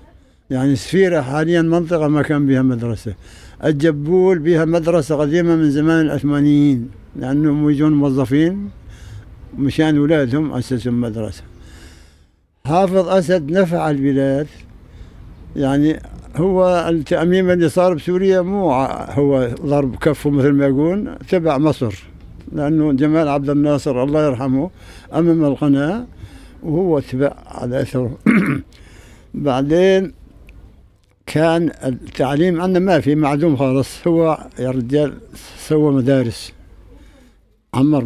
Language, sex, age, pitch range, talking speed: Arabic, male, 60-79, 115-155 Hz, 110 wpm